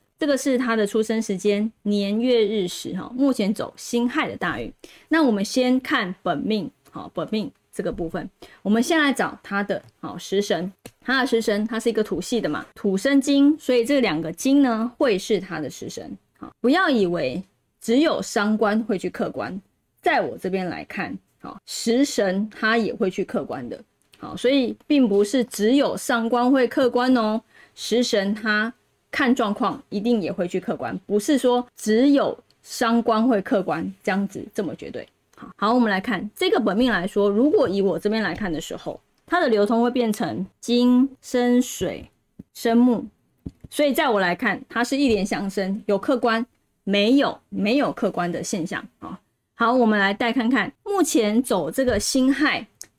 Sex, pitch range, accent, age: female, 205-255 Hz, American, 20-39